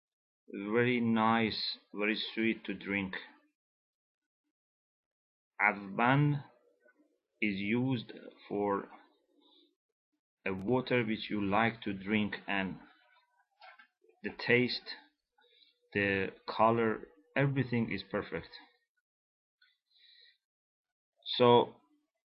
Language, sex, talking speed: English, male, 70 wpm